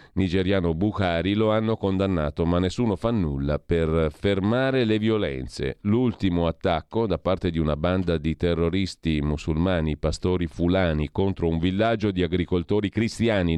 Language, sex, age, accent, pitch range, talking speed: Italian, male, 40-59, native, 80-105 Hz, 135 wpm